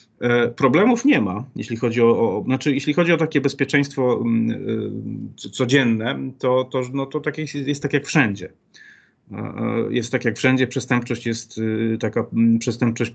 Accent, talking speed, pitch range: native, 155 wpm, 110-135 Hz